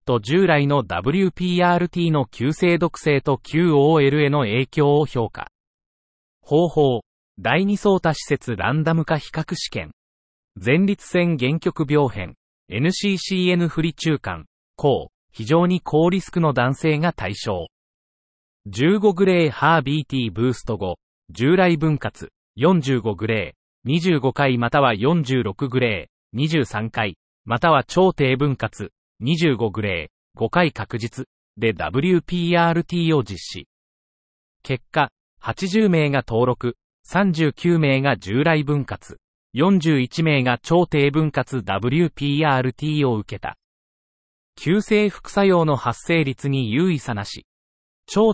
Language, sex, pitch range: Japanese, male, 115-170 Hz